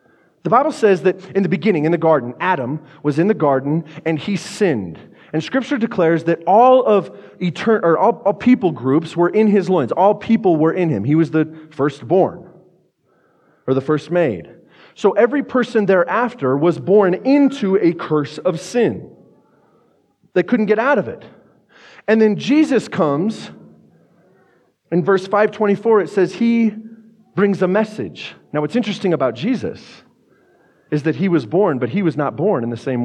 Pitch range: 155-215 Hz